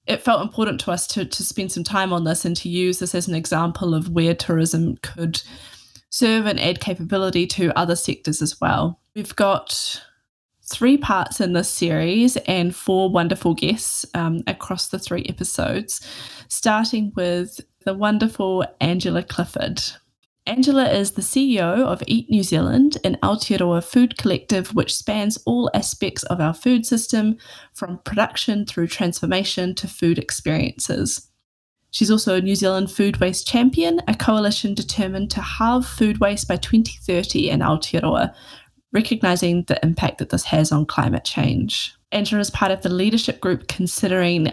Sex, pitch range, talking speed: female, 175-225 Hz, 160 wpm